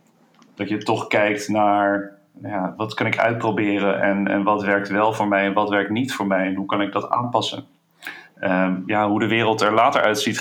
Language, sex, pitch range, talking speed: Dutch, male, 105-115 Hz, 215 wpm